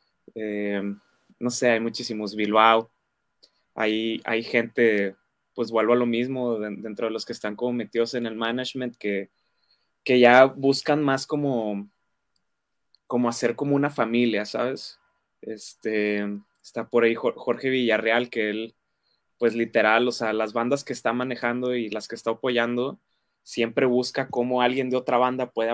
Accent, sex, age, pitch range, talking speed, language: Mexican, male, 20-39, 110-130 Hz, 155 wpm, Spanish